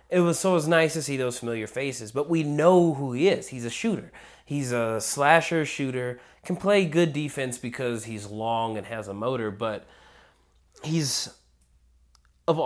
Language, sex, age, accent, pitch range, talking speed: English, male, 30-49, American, 110-140 Hz, 180 wpm